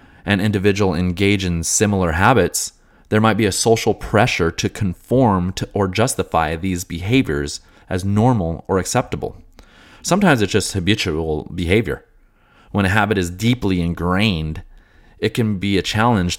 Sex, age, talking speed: male, 30-49, 145 wpm